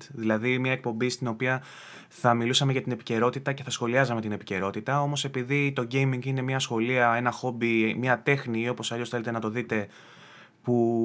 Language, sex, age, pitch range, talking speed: Greek, male, 20-39, 115-135 Hz, 180 wpm